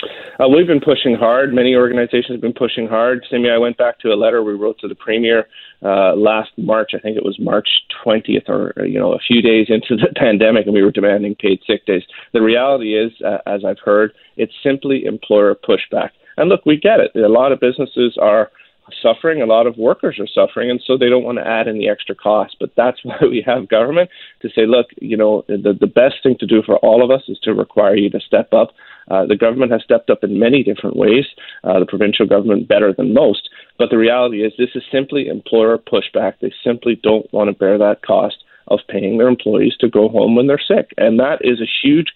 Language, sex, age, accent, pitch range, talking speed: English, male, 30-49, American, 110-125 Hz, 235 wpm